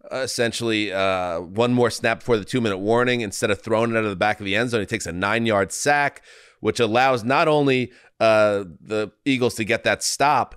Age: 30-49